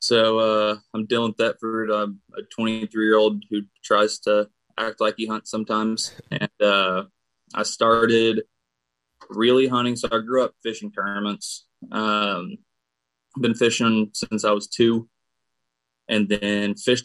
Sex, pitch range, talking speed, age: male, 100-115 Hz, 145 wpm, 20-39